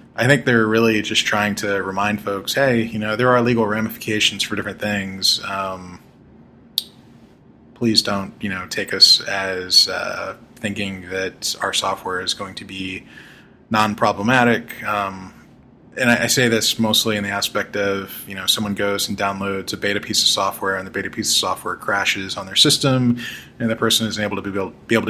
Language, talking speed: English, 190 wpm